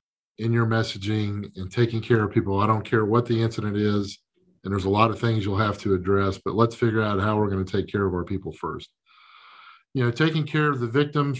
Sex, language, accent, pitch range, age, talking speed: male, English, American, 105-130 Hz, 40-59, 240 wpm